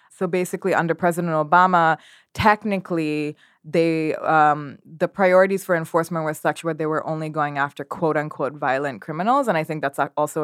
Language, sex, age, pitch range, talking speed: English, female, 20-39, 155-185 Hz, 165 wpm